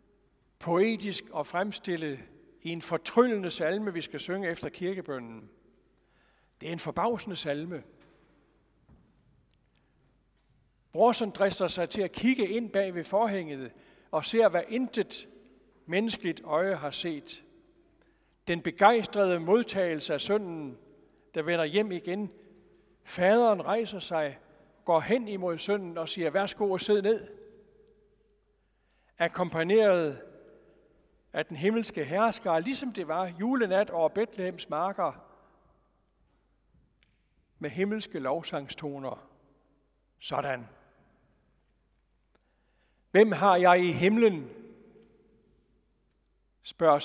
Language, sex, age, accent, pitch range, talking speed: Danish, male, 60-79, native, 160-210 Hz, 100 wpm